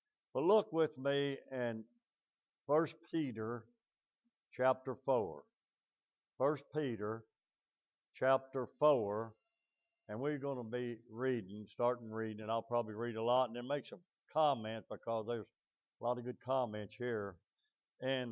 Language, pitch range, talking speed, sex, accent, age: English, 100-125 Hz, 135 wpm, male, American, 60-79